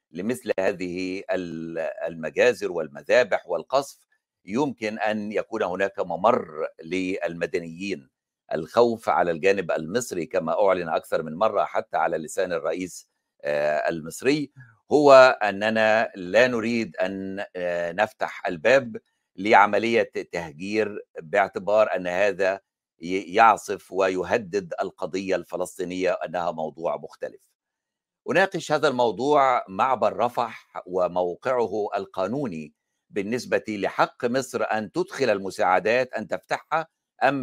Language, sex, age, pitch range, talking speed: Arabic, male, 60-79, 95-135 Hz, 95 wpm